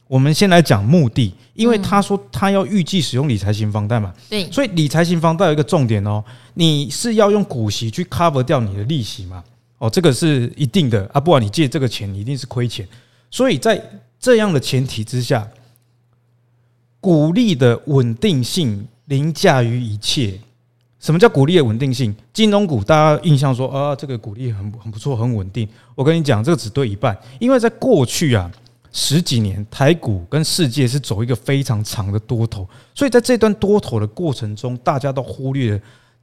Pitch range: 115-160 Hz